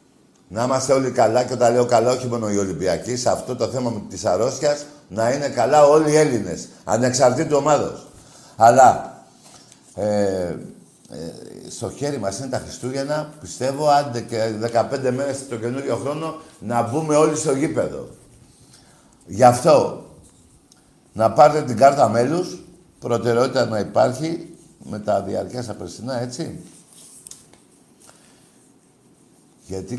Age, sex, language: 60-79, male, Greek